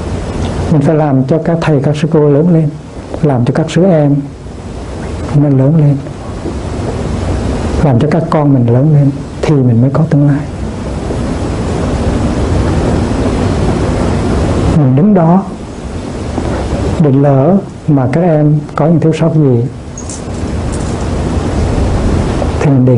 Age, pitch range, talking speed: 60-79, 120-160 Hz, 125 wpm